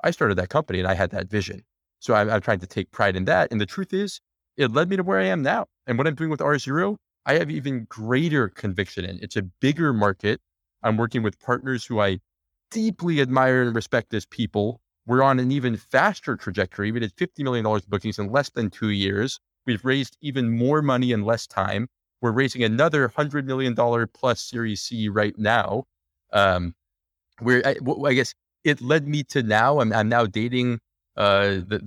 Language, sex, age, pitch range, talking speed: English, male, 30-49, 100-130 Hz, 205 wpm